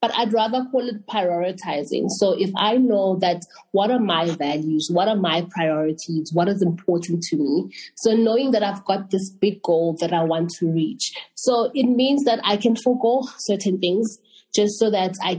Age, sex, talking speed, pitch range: 20-39, female, 195 wpm, 175-235 Hz